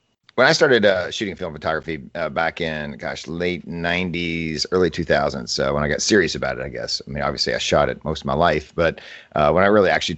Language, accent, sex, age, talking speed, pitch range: English, American, male, 50-69, 235 wpm, 80-100 Hz